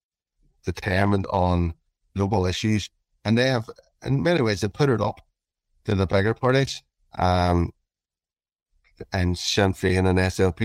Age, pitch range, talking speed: 30-49, 85-100 Hz, 135 wpm